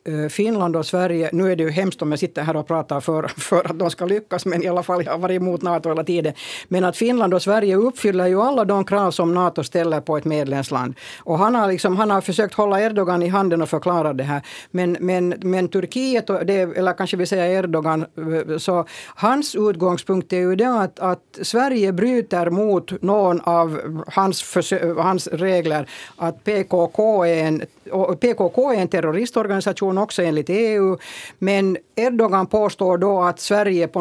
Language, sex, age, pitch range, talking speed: Swedish, female, 60-79, 165-200 Hz, 185 wpm